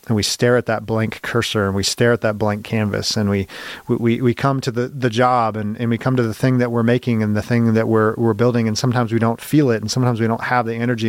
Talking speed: 285 wpm